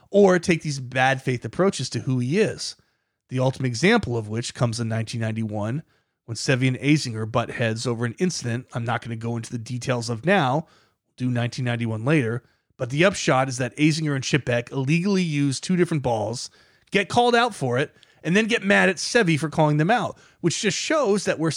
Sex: male